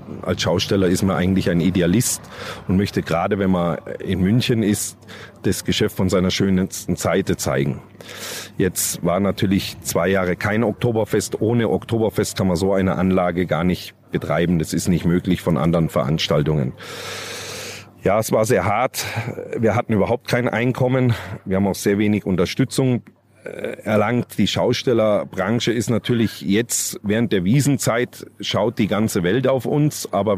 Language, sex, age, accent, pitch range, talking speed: German, male, 40-59, German, 95-115 Hz, 155 wpm